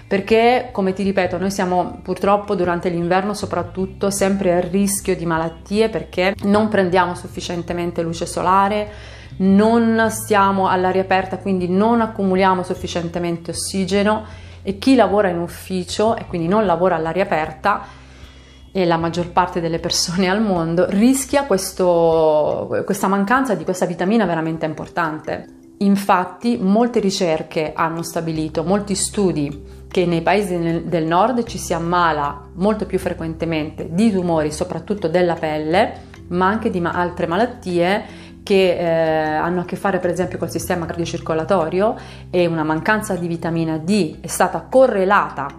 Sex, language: female, Italian